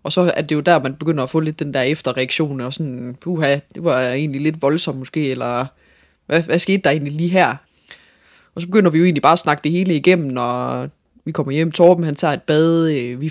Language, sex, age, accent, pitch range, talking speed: Danish, female, 20-39, native, 140-180 Hz, 240 wpm